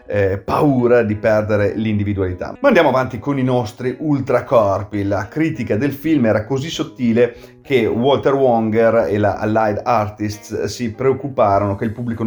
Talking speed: 150 wpm